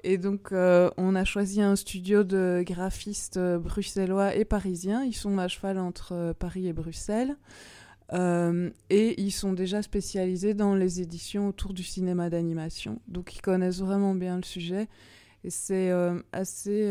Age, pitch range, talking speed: 20-39, 175-200 Hz, 160 wpm